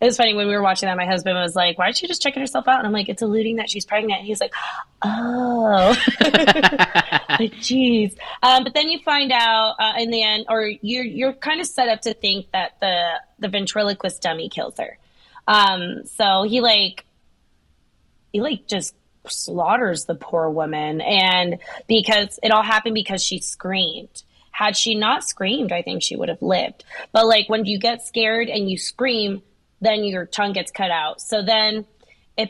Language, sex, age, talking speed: English, female, 20-39, 195 wpm